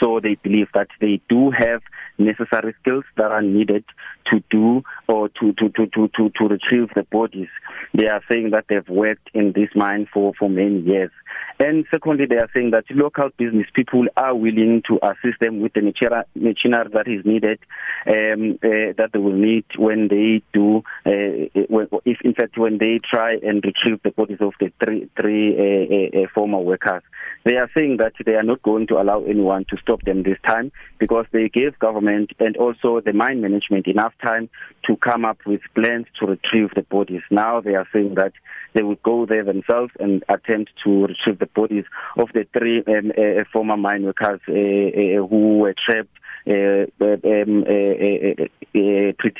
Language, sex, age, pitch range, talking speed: English, male, 30-49, 105-115 Hz, 185 wpm